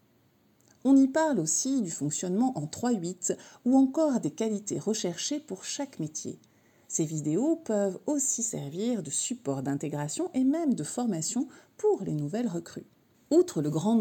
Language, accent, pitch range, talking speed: French, French, 165-270 Hz, 150 wpm